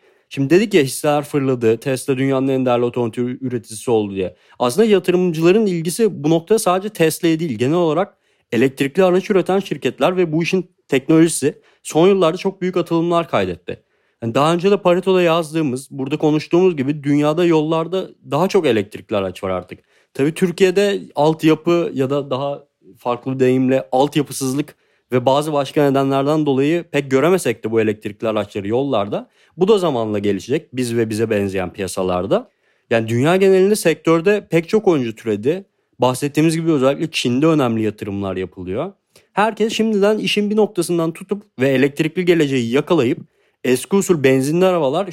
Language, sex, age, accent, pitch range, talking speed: Turkish, male, 40-59, native, 130-180 Hz, 150 wpm